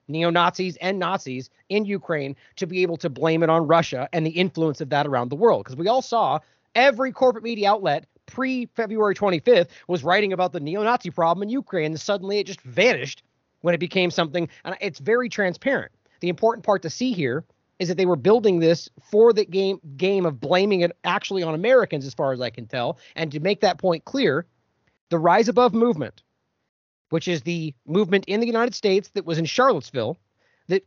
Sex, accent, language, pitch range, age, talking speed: male, American, English, 160-210 Hz, 30-49, 200 wpm